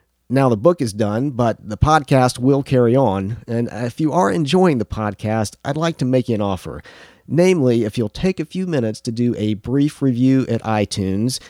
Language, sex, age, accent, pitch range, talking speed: English, male, 40-59, American, 110-135 Hz, 205 wpm